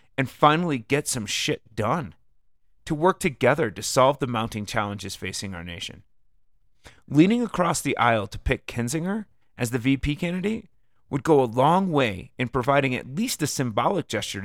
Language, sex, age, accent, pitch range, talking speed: English, male, 30-49, American, 105-145 Hz, 165 wpm